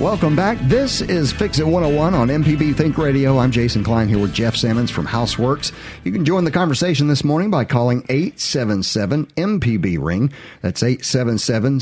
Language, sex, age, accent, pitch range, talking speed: English, male, 50-69, American, 105-145 Hz, 175 wpm